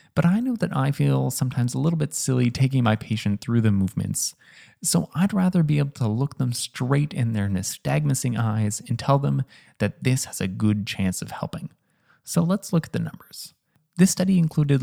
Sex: male